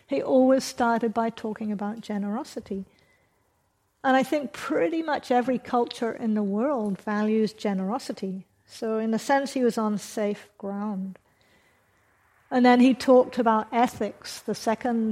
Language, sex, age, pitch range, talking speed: English, female, 50-69, 205-240 Hz, 145 wpm